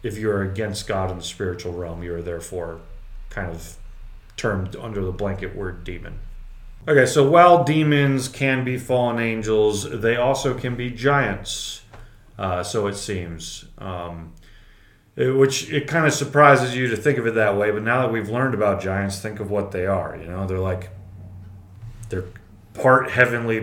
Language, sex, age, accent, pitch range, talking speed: English, male, 30-49, American, 95-120 Hz, 175 wpm